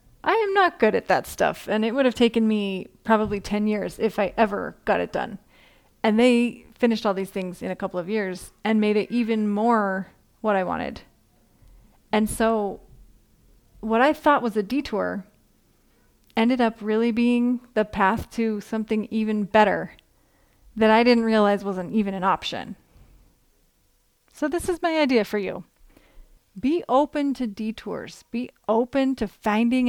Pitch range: 210-245 Hz